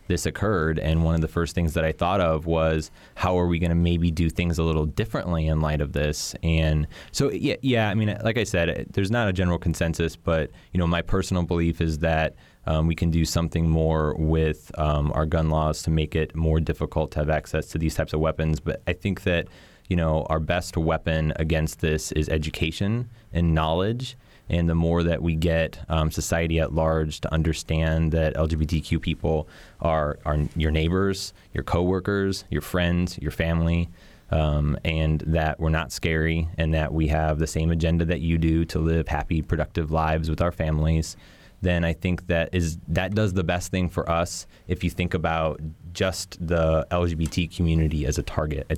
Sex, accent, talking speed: male, American, 200 wpm